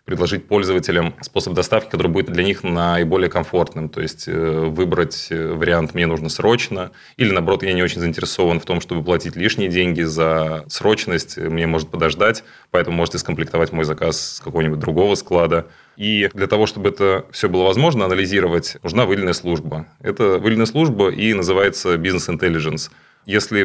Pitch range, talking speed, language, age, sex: 80-90 Hz, 160 wpm, Russian, 20-39, male